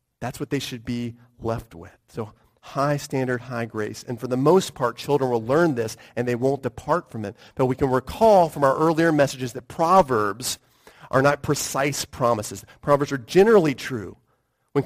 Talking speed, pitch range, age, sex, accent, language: 185 wpm, 120-155 Hz, 40-59, male, American, English